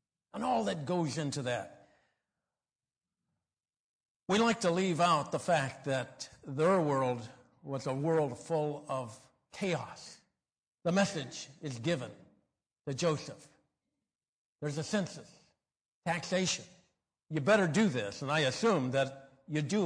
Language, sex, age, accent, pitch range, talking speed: English, male, 60-79, American, 135-175 Hz, 125 wpm